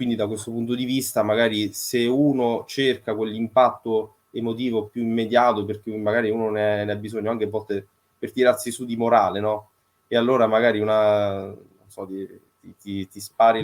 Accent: native